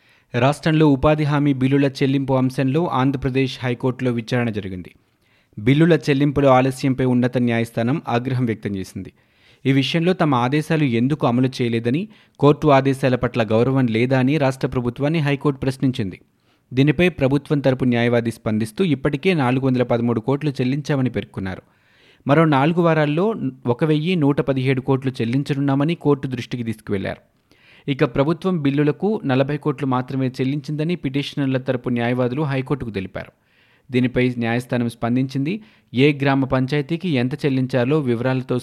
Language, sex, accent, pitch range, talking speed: Telugu, male, native, 120-145 Hz, 115 wpm